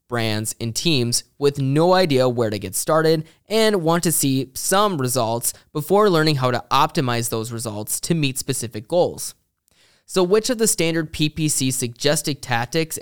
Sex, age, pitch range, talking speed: male, 20-39, 120-160 Hz, 160 wpm